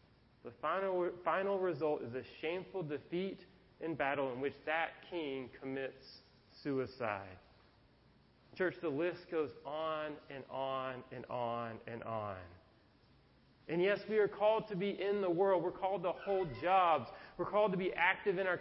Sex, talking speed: male, 160 wpm